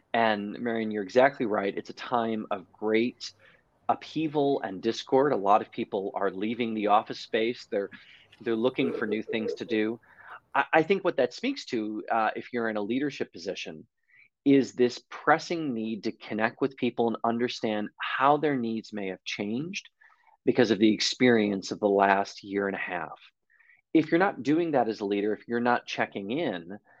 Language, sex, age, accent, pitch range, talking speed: English, male, 30-49, American, 105-135 Hz, 185 wpm